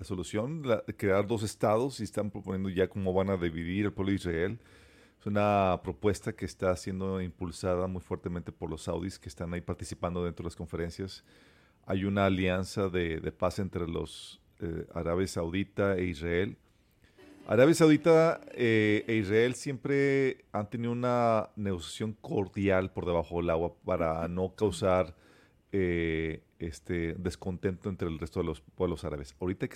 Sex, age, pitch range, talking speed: male, 40-59, 85-105 Hz, 165 wpm